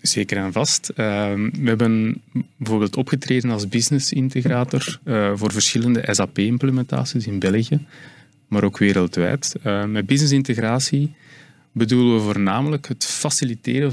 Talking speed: 125 wpm